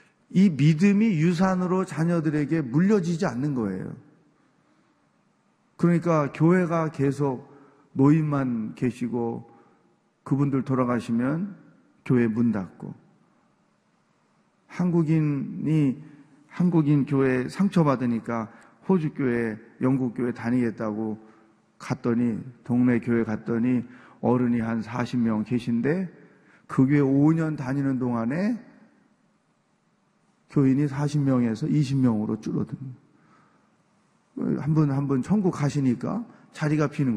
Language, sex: Korean, male